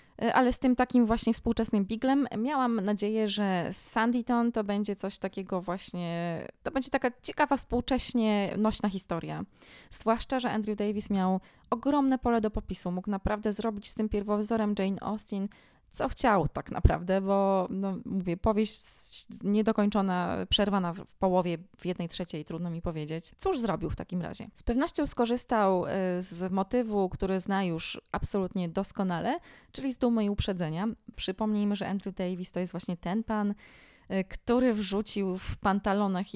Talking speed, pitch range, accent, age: 150 wpm, 180-215 Hz, native, 20-39